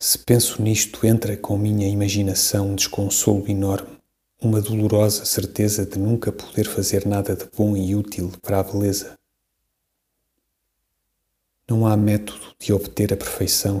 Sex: male